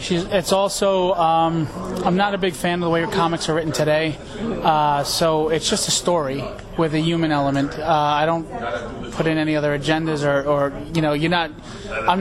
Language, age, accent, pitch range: English, 30-49, American, 155-175 Hz